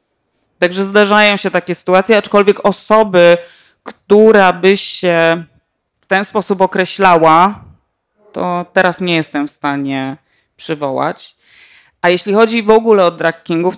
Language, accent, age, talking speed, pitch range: Polish, native, 20-39, 120 wpm, 165-200 Hz